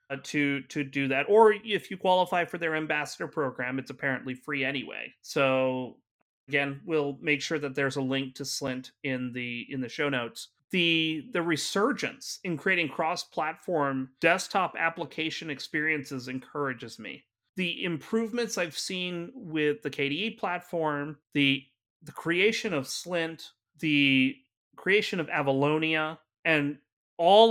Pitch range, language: 135-170 Hz, English